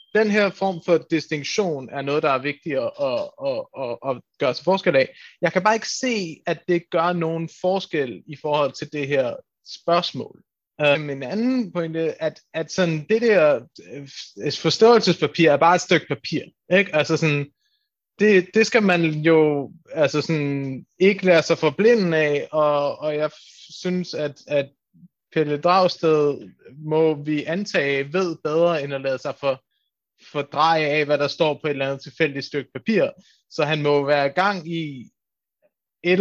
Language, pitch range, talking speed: Danish, 145-180 Hz, 170 wpm